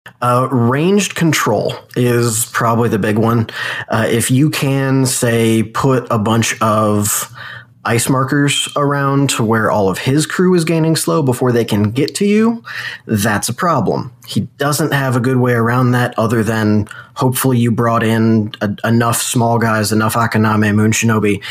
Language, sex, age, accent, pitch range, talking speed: English, male, 20-39, American, 115-135 Hz, 165 wpm